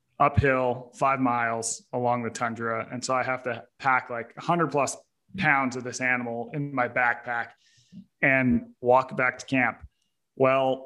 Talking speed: 160 wpm